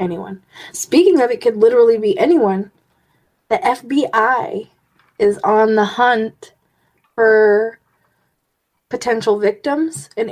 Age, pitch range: 20-39, 200-240 Hz